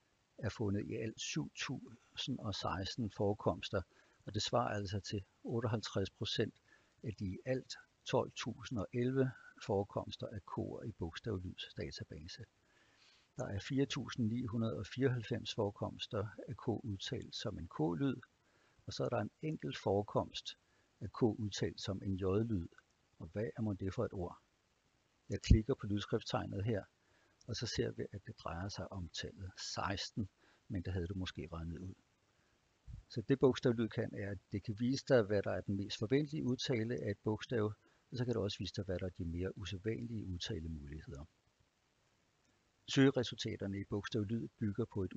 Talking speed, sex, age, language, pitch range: 155 wpm, male, 60-79, Danish, 100-120 Hz